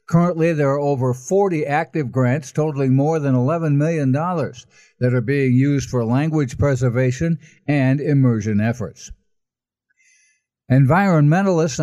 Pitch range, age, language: 130-165 Hz, 60-79, English